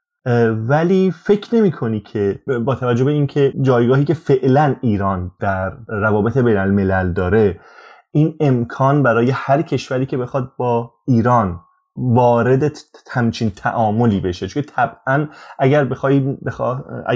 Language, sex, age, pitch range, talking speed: Persian, male, 20-39, 110-135 Hz, 120 wpm